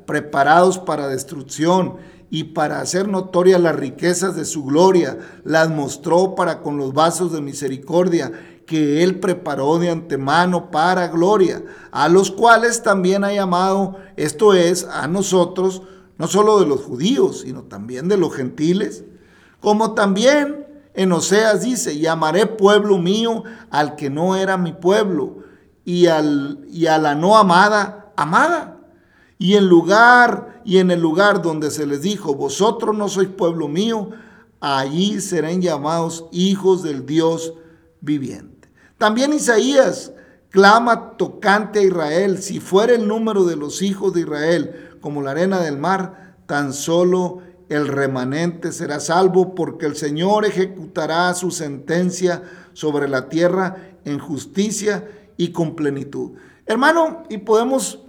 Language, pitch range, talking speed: Spanish, 160-200 Hz, 140 wpm